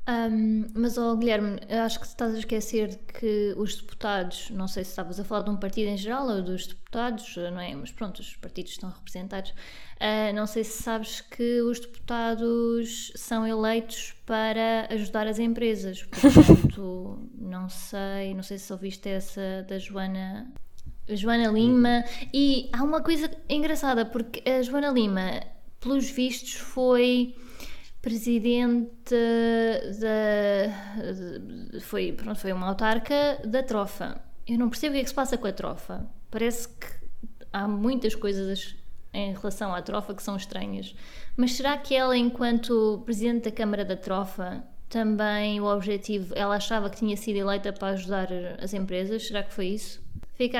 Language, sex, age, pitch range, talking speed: English, female, 20-39, 200-235 Hz, 160 wpm